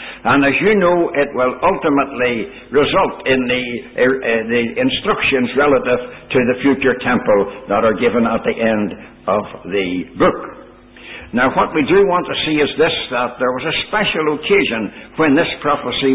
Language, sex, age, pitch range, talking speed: English, male, 60-79, 135-200 Hz, 165 wpm